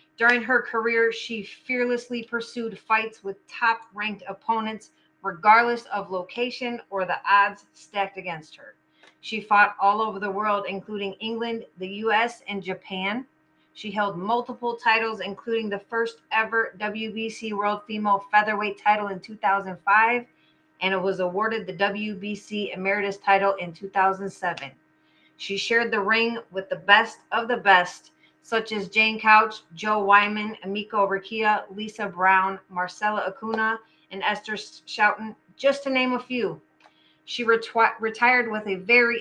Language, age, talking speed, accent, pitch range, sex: English, 30-49, 140 wpm, American, 195-230 Hz, female